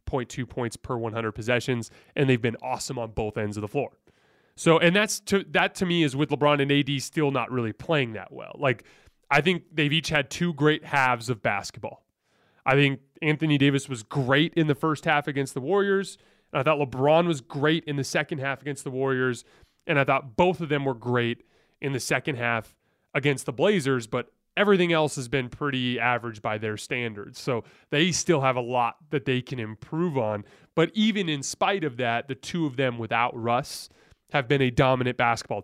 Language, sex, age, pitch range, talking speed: English, male, 30-49, 125-155 Hz, 205 wpm